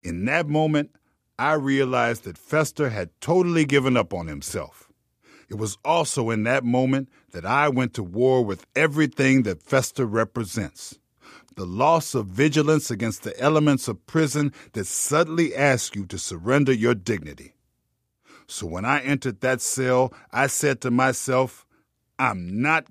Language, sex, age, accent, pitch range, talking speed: English, male, 50-69, American, 110-145 Hz, 150 wpm